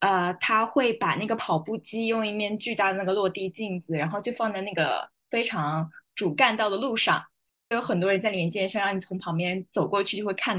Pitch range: 190-240 Hz